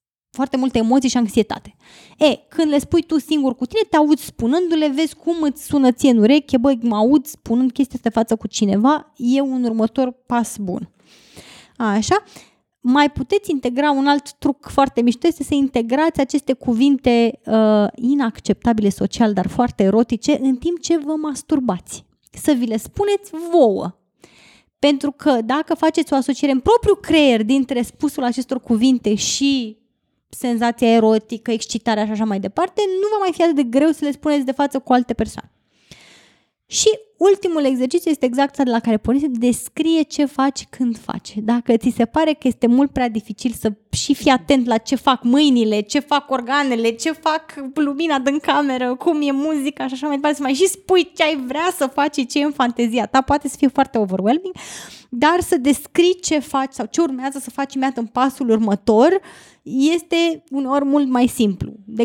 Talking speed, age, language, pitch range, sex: 180 wpm, 20-39, Romanian, 235-300 Hz, female